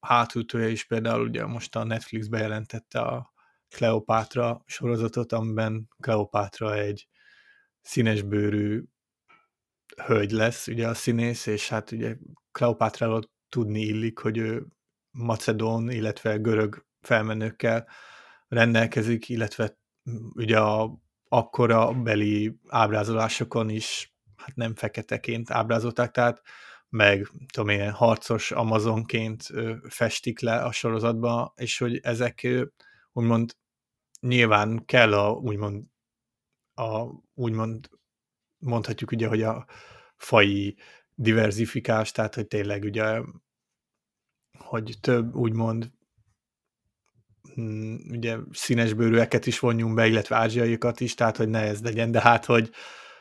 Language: Hungarian